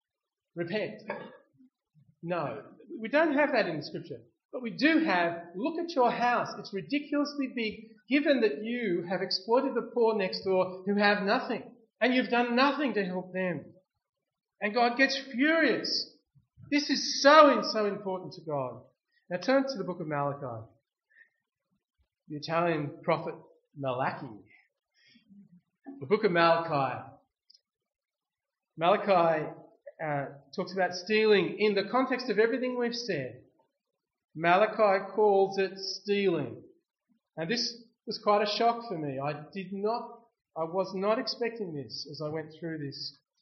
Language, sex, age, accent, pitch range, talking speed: English, male, 40-59, Australian, 160-235 Hz, 140 wpm